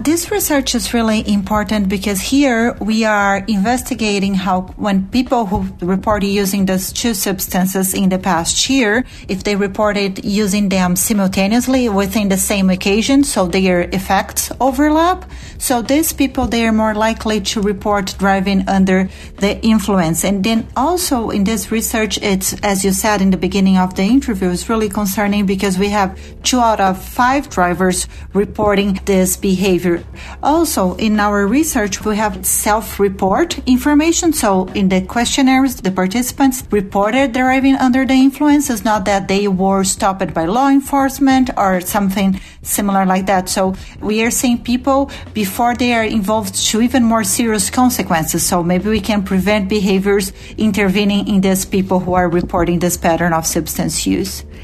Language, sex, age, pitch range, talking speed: English, female, 40-59, 195-240 Hz, 160 wpm